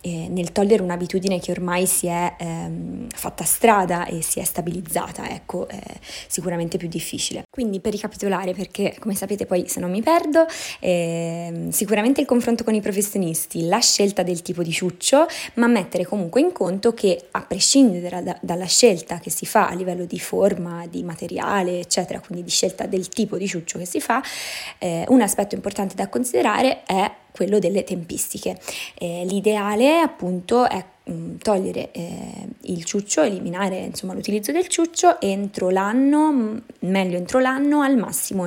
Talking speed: 160 wpm